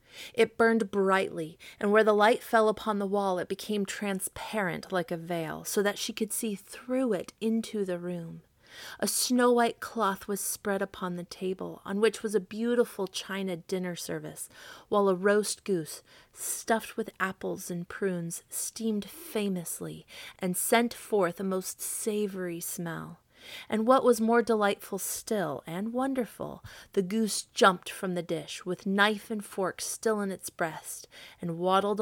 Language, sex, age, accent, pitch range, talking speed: English, female, 30-49, American, 180-225 Hz, 160 wpm